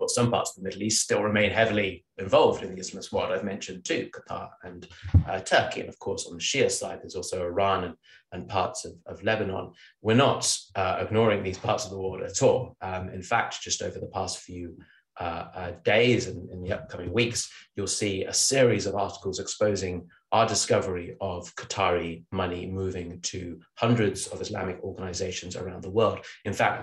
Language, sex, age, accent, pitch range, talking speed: English, male, 30-49, British, 90-120 Hz, 195 wpm